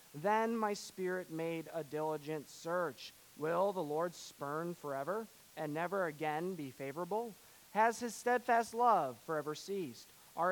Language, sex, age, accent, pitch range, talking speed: English, male, 30-49, American, 155-195 Hz, 135 wpm